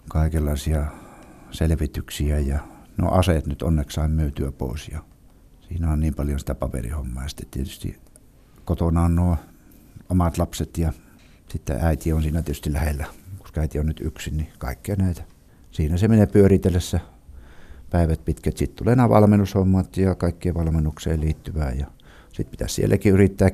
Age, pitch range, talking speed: 60-79, 75-85 Hz, 150 wpm